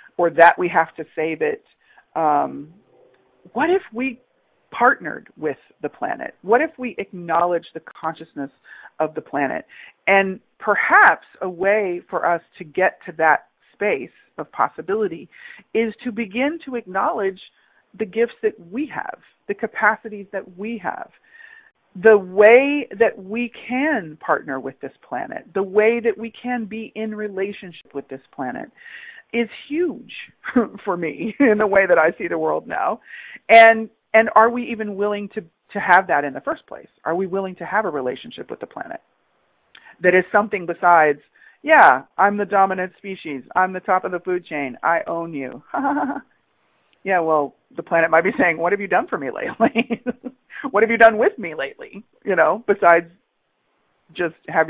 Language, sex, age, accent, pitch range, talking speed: English, female, 40-59, American, 170-230 Hz, 170 wpm